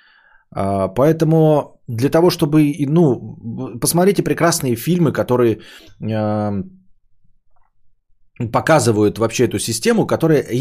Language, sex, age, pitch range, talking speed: Bulgarian, male, 20-39, 105-155 Hz, 80 wpm